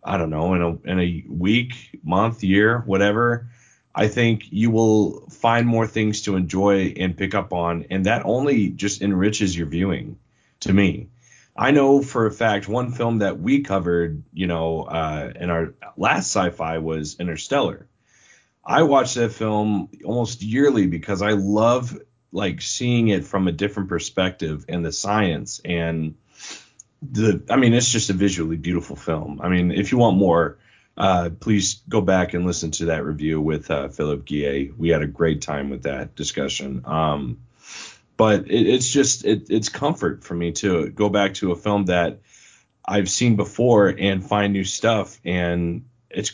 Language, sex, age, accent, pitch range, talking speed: English, male, 30-49, American, 85-110 Hz, 170 wpm